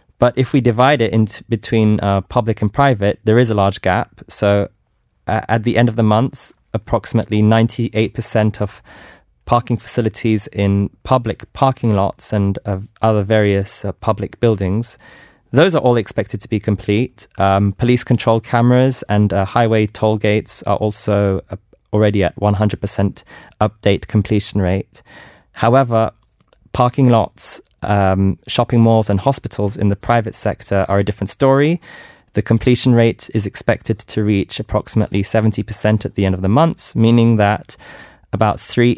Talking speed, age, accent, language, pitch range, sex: 150 wpm, 20-39, British, English, 100-115 Hz, male